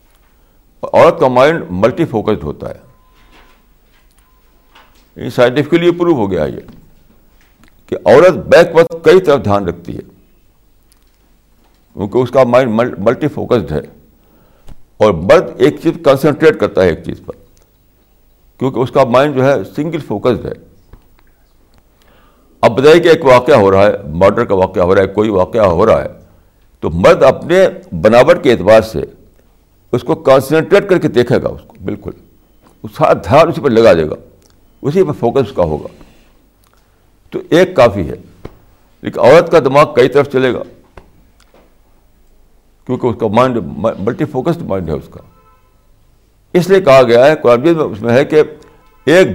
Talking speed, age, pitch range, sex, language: 160 wpm, 60-79, 105-155 Hz, male, Urdu